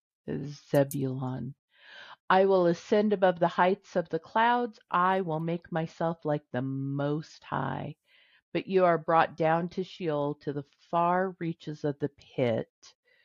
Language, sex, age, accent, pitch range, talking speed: English, female, 50-69, American, 140-170 Hz, 145 wpm